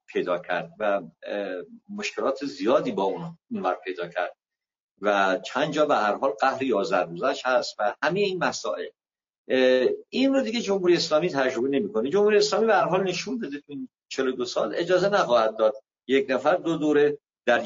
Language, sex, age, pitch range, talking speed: Persian, male, 50-69, 130-185 Hz, 170 wpm